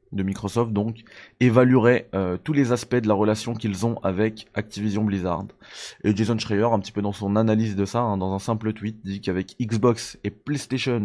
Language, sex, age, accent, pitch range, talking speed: French, male, 20-39, French, 100-115 Hz, 200 wpm